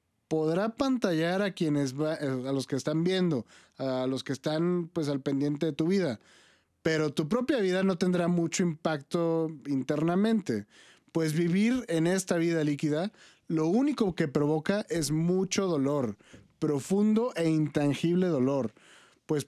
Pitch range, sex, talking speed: 140-185 Hz, male, 140 wpm